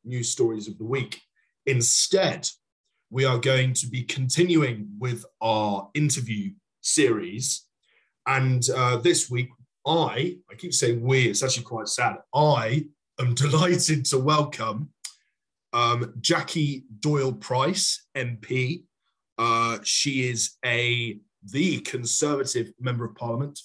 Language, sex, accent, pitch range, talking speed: English, male, British, 115-135 Hz, 120 wpm